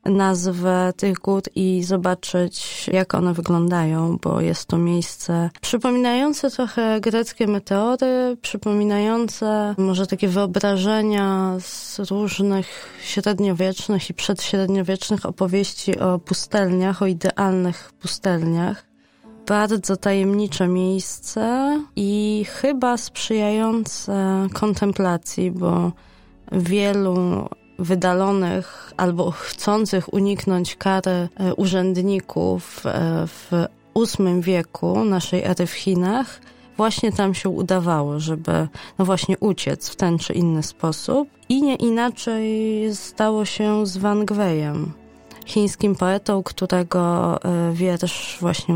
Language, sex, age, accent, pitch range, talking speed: Polish, female, 20-39, native, 180-210 Hz, 95 wpm